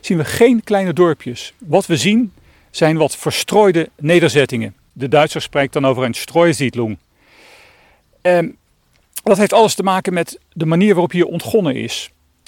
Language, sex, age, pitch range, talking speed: Dutch, male, 40-59, 135-195 Hz, 150 wpm